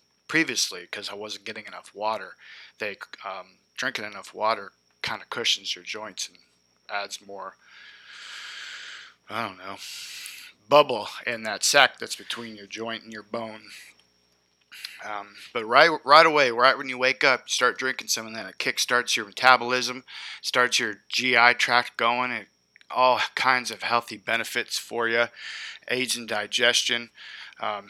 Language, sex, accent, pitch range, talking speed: English, male, American, 105-120 Hz, 155 wpm